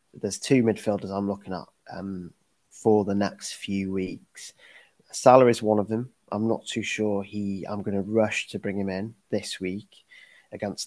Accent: British